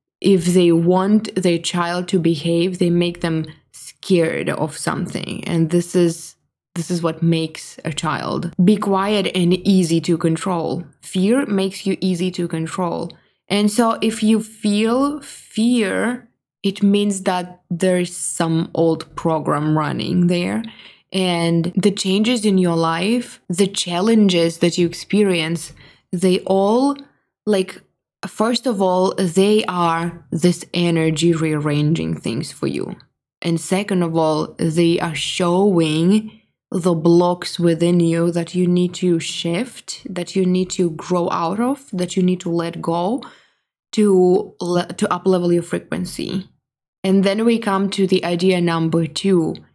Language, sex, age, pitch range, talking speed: English, female, 20-39, 165-195 Hz, 140 wpm